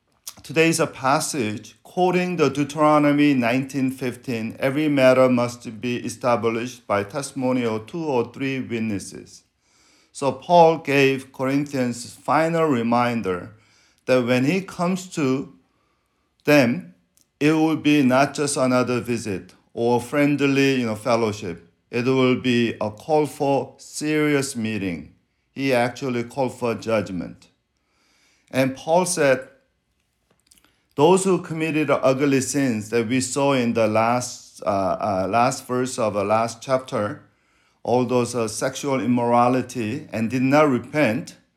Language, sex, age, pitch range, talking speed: English, male, 50-69, 120-140 Hz, 125 wpm